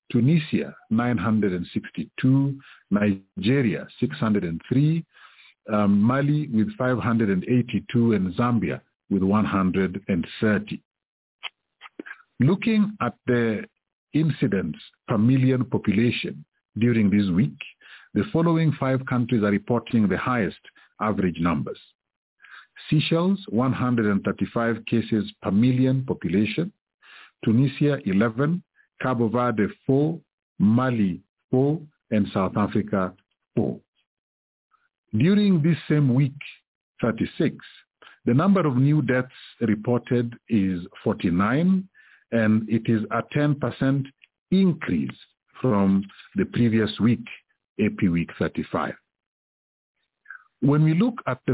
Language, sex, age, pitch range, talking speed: English, male, 50-69, 105-145 Hz, 95 wpm